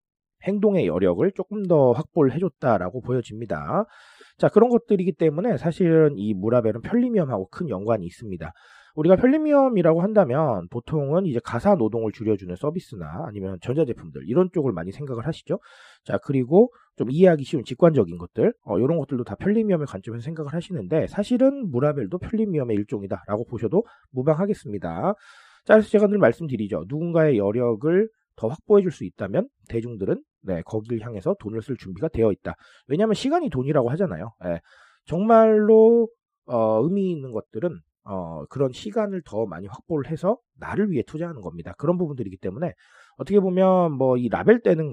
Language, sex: Korean, male